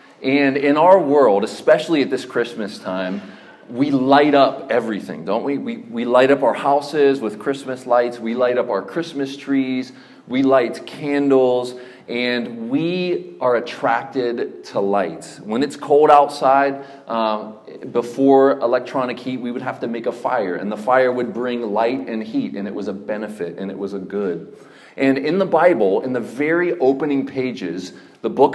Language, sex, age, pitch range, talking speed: English, male, 30-49, 115-145 Hz, 175 wpm